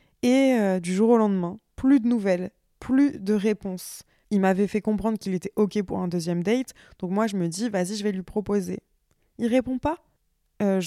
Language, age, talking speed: French, 20-39, 205 wpm